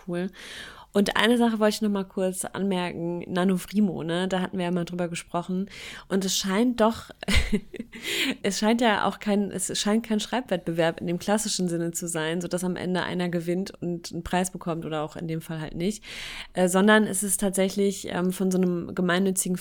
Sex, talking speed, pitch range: female, 195 wpm, 175-195 Hz